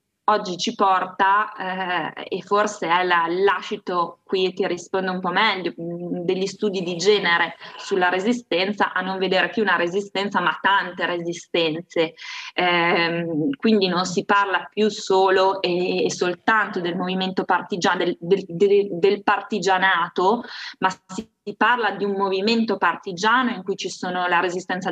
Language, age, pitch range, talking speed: Italian, 20-39, 180-200 Hz, 150 wpm